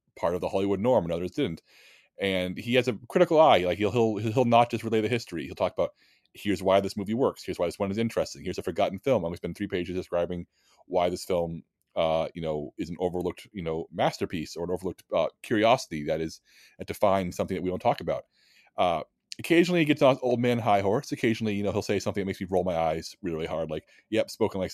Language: English